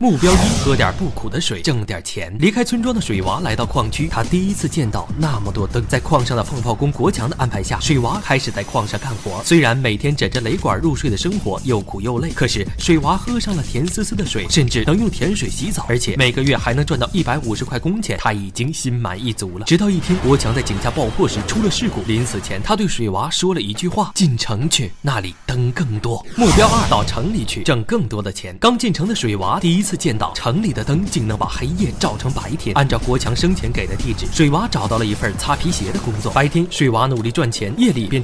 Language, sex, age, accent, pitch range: Chinese, male, 20-39, native, 110-165 Hz